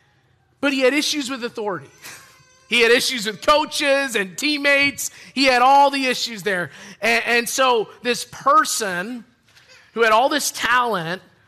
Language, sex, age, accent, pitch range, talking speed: English, male, 30-49, American, 175-225 Hz, 150 wpm